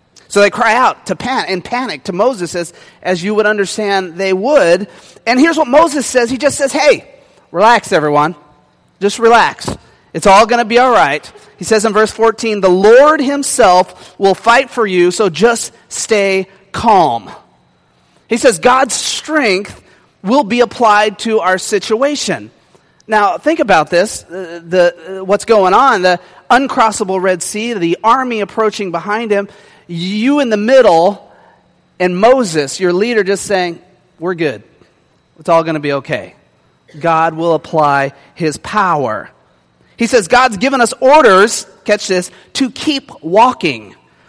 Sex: male